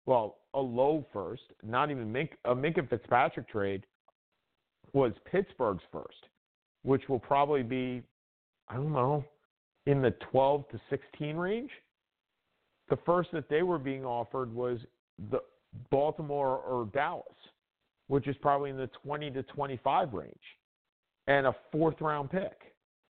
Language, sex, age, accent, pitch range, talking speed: English, male, 50-69, American, 120-150 Hz, 140 wpm